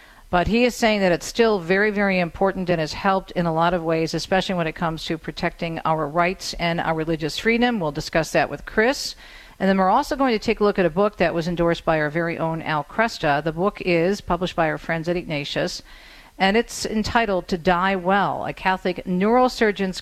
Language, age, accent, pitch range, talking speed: English, 50-69, American, 165-205 Hz, 220 wpm